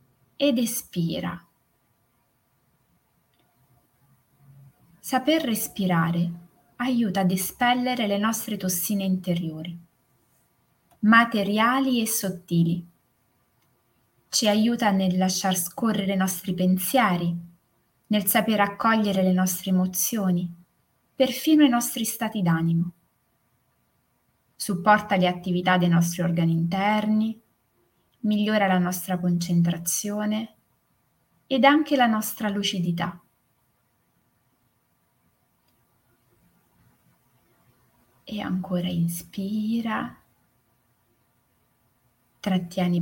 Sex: female